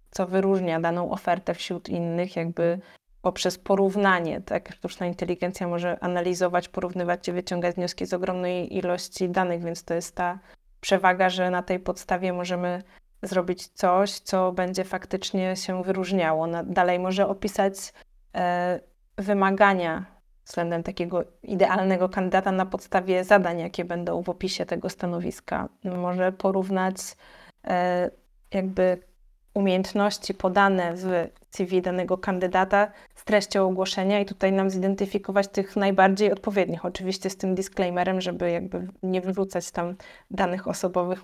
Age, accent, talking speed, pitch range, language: 20-39, native, 125 wpm, 180-195 Hz, Polish